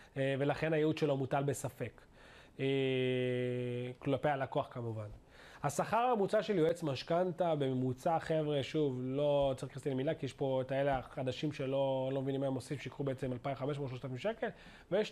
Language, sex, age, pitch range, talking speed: Hebrew, male, 30-49, 135-190 Hz, 150 wpm